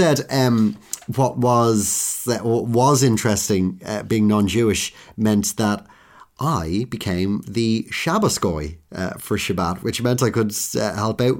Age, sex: 30-49, male